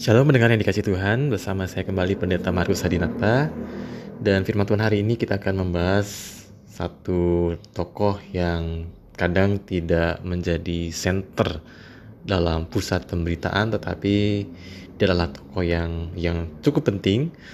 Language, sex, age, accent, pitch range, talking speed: Indonesian, male, 20-39, native, 85-100 Hz, 125 wpm